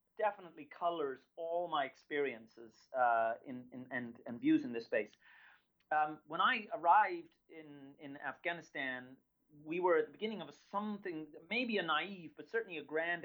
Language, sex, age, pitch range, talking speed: English, male, 30-49, 150-205 Hz, 160 wpm